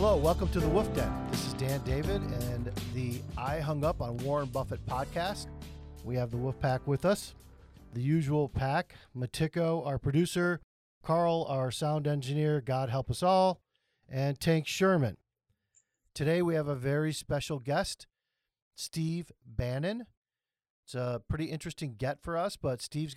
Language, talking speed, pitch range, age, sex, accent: English, 160 wpm, 130-170 Hz, 50-69, male, American